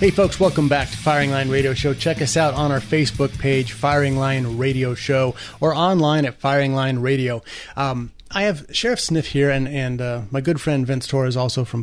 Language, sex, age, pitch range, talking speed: English, male, 30-49, 125-160 Hz, 215 wpm